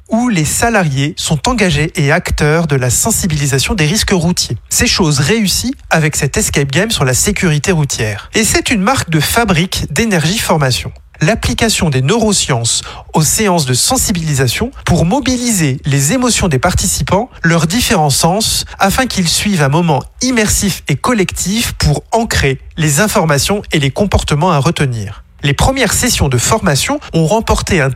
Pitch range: 145-205 Hz